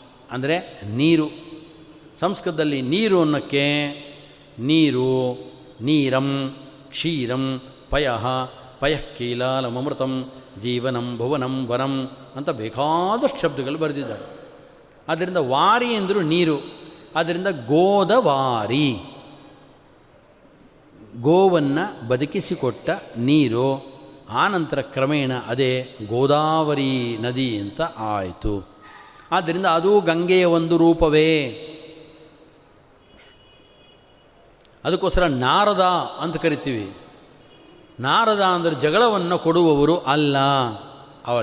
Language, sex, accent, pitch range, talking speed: Kannada, male, native, 130-170 Hz, 70 wpm